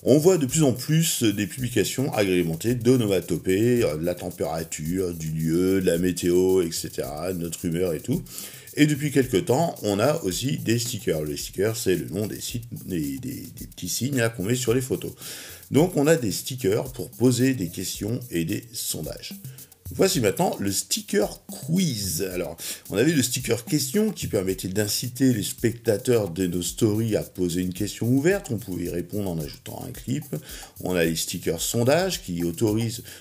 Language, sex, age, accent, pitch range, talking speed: French, male, 50-69, French, 90-130 Hz, 185 wpm